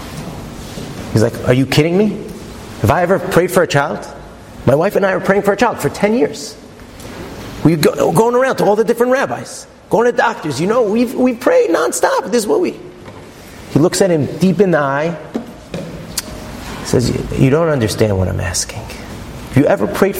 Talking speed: 200 wpm